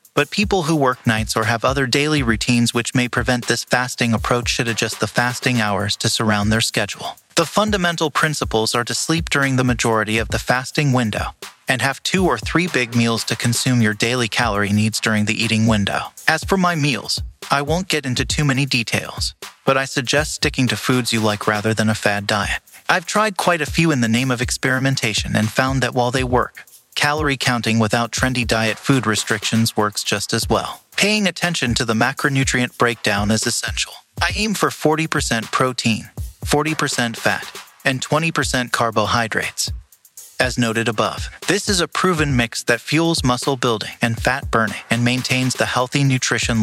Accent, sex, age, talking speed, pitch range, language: American, male, 30-49, 185 wpm, 115-145 Hz, English